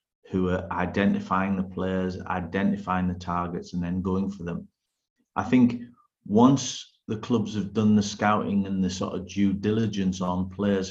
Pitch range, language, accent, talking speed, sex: 95-105 Hz, English, British, 165 wpm, male